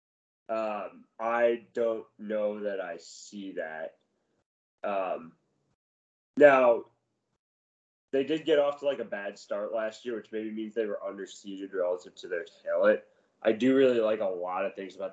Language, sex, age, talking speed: English, male, 20-39, 160 wpm